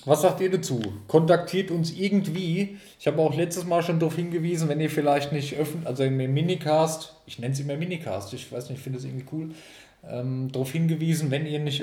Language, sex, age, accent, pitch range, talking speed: German, male, 20-39, German, 125-155 Hz, 220 wpm